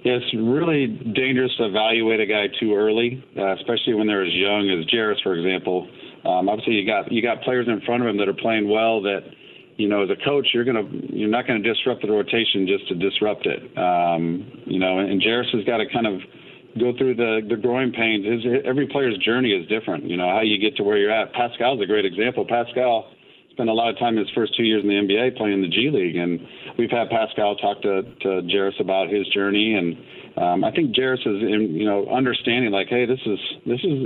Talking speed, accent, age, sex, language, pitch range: 240 wpm, American, 40-59, male, English, 100-120 Hz